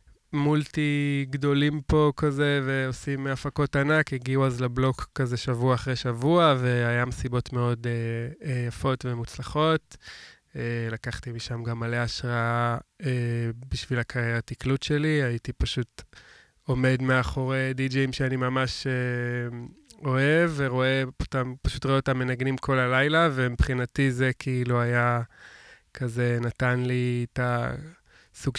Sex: male